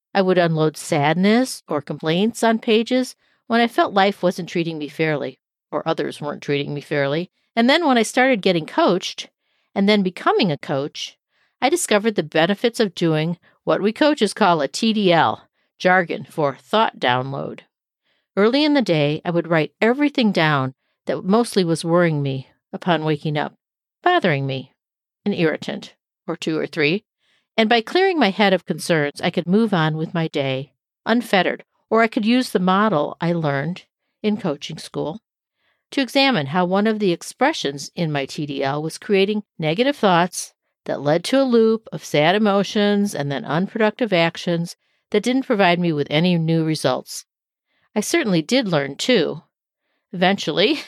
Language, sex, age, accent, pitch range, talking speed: English, female, 50-69, American, 160-230 Hz, 165 wpm